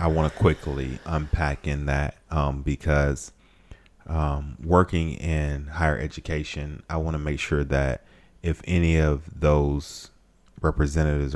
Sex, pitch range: male, 70-85 Hz